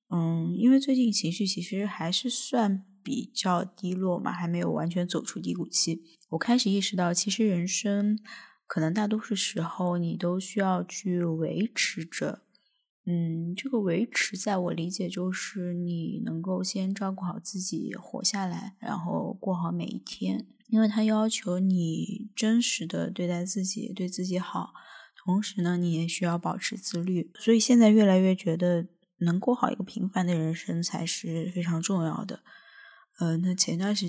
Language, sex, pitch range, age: Chinese, female, 175-205 Hz, 20-39